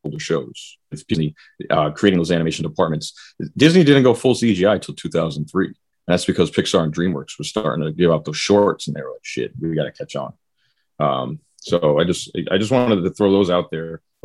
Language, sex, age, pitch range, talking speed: English, male, 30-49, 80-95 Hz, 215 wpm